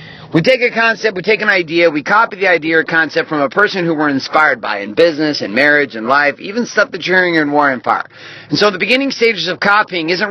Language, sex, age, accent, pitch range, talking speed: English, male, 40-59, American, 160-205 Hz, 250 wpm